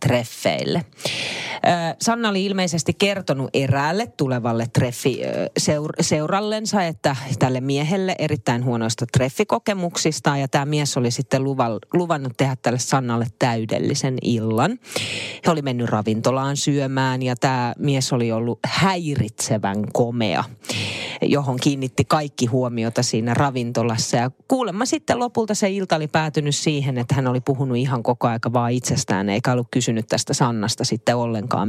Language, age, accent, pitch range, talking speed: Finnish, 30-49, native, 120-170 Hz, 125 wpm